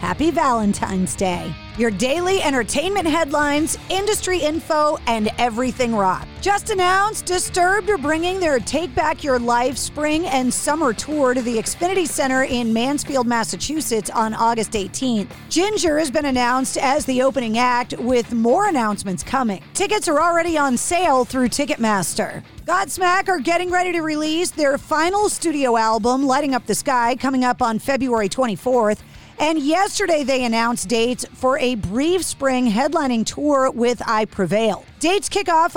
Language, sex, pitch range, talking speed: English, female, 240-320 Hz, 155 wpm